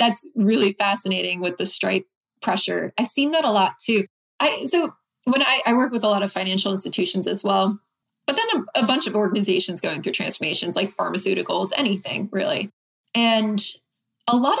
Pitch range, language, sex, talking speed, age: 195-225 Hz, English, female, 180 wpm, 20-39